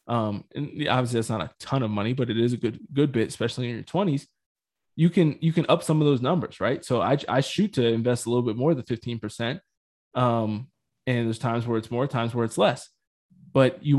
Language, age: English, 20-39